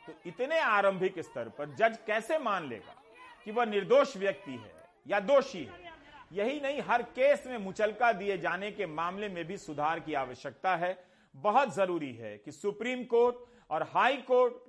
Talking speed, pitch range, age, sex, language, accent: 170 wpm, 160-240 Hz, 40-59, male, Hindi, native